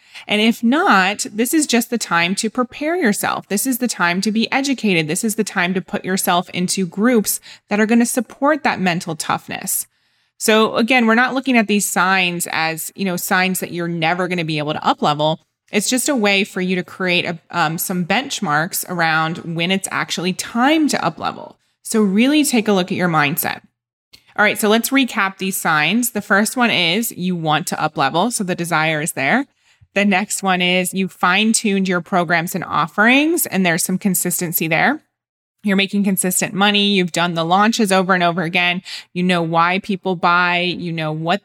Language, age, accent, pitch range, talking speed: English, 20-39, American, 175-220 Hz, 200 wpm